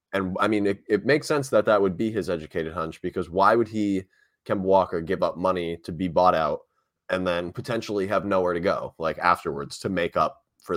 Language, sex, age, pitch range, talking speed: English, male, 20-39, 85-105 Hz, 225 wpm